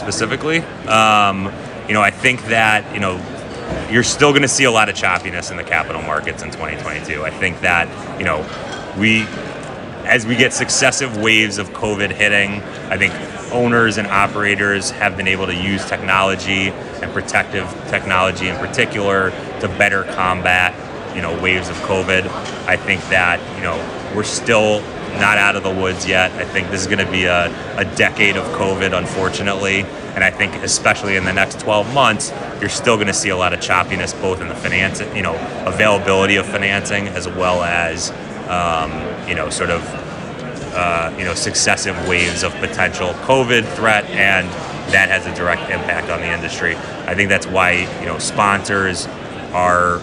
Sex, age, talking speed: male, 30-49, 180 wpm